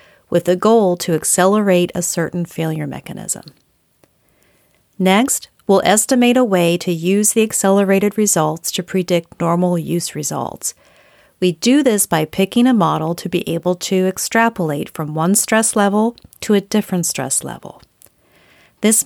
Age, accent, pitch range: 40-59, American, 170-205 Hz